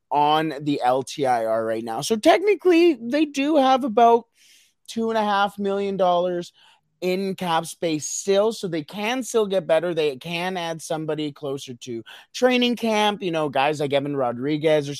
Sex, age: male, 30-49